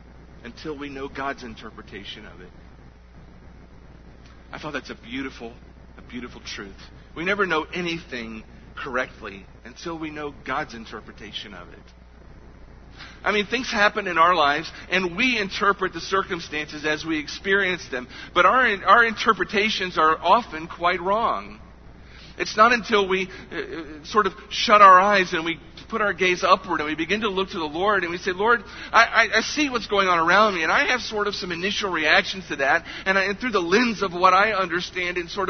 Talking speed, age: 185 wpm, 50-69